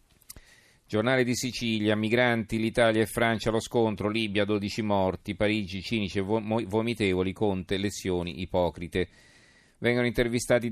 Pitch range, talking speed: 95-115 Hz, 120 wpm